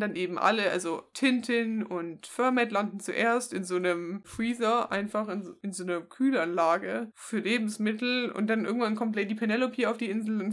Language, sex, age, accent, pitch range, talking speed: German, female, 20-39, German, 190-230 Hz, 175 wpm